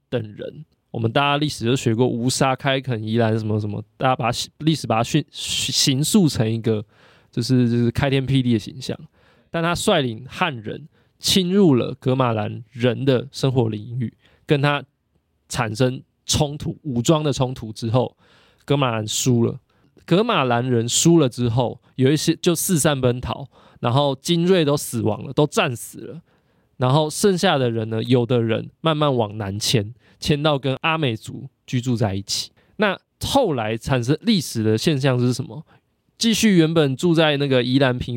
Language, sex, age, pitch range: Chinese, male, 20-39, 115-155 Hz